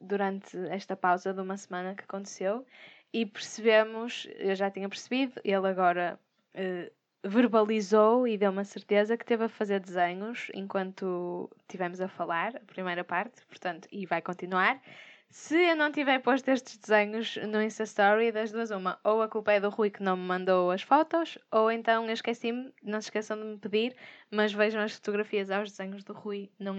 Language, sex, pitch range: Portuguese, female, 195-235 Hz